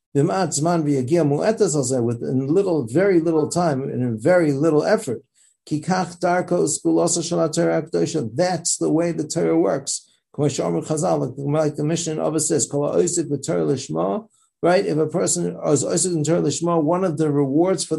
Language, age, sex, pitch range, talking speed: English, 60-79, male, 135-170 Hz, 115 wpm